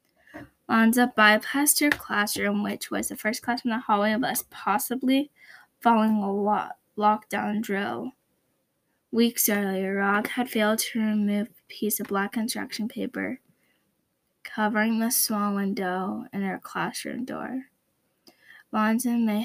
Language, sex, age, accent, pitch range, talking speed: English, female, 10-29, American, 200-235 Hz, 135 wpm